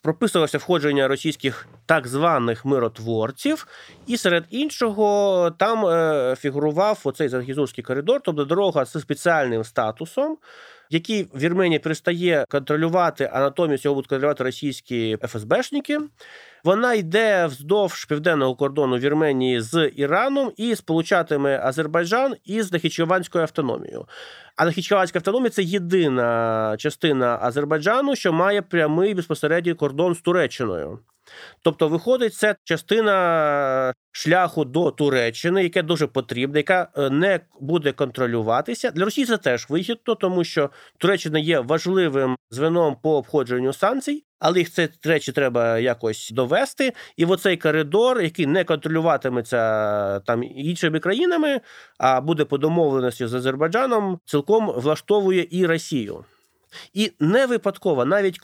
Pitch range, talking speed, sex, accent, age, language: 140-190 Hz, 120 wpm, male, native, 30-49, Ukrainian